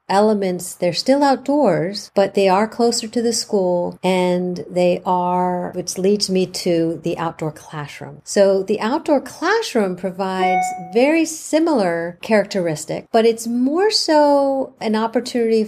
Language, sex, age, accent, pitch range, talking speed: English, female, 50-69, American, 180-230 Hz, 135 wpm